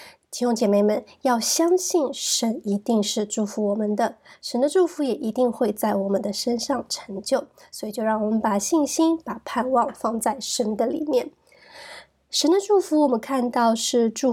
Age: 20-39